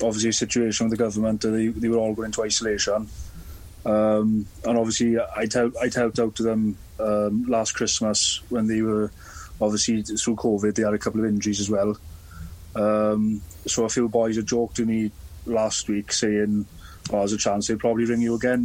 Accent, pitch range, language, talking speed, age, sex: British, 100-115 Hz, English, 200 wpm, 20-39, male